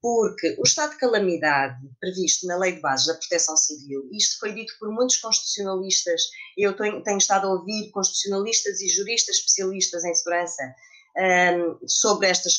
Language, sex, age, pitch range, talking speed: Portuguese, female, 20-39, 175-260 Hz, 155 wpm